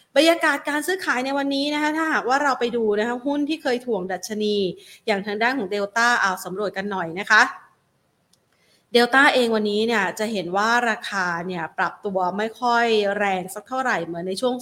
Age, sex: 30-49, female